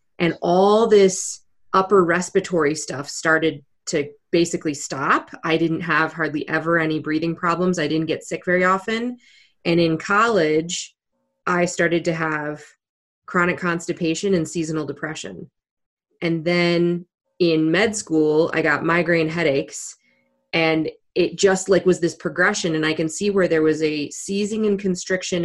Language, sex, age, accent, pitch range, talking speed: English, female, 20-39, American, 155-180 Hz, 150 wpm